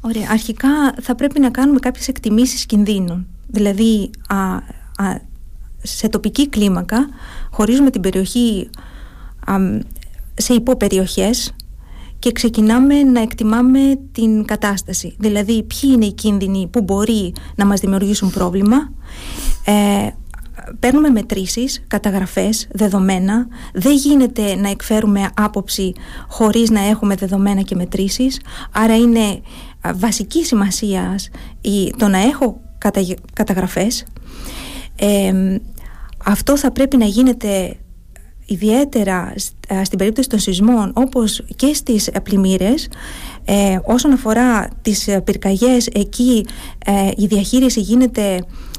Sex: female